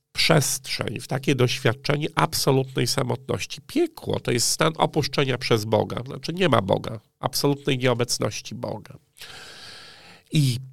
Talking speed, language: 115 wpm, Polish